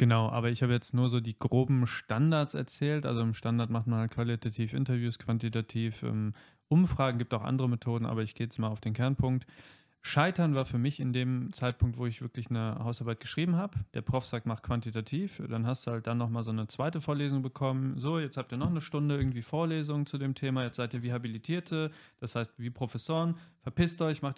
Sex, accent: male, German